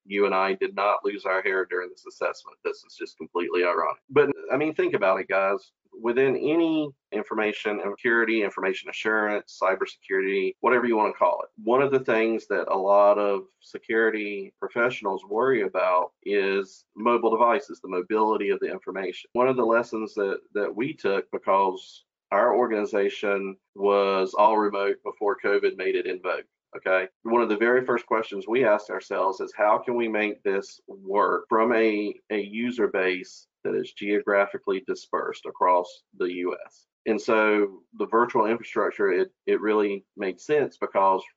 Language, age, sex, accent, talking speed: English, 30-49, male, American, 170 wpm